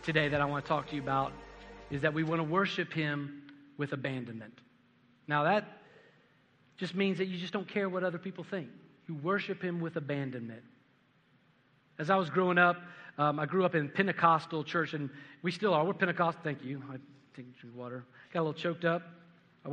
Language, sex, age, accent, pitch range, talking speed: English, male, 40-59, American, 140-180 Hz, 200 wpm